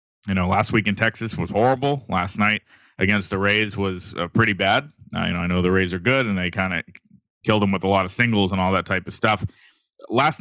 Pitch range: 95-110 Hz